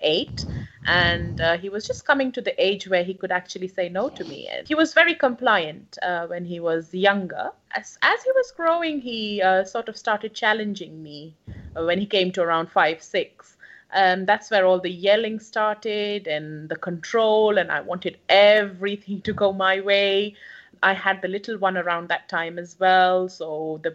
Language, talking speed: English, 190 wpm